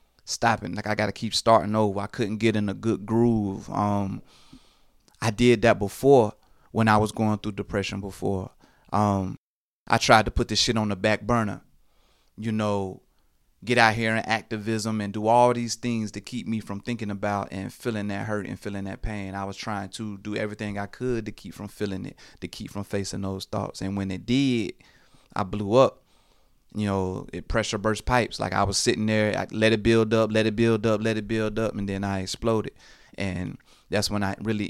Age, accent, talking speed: 30-49, American, 210 wpm